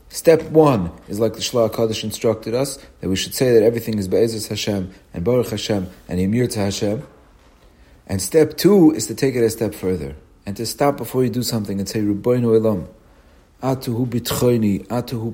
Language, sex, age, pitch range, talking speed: English, male, 40-59, 100-135 Hz, 190 wpm